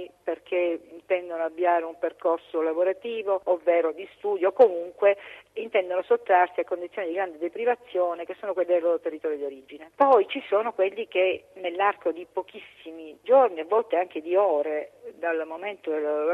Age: 50-69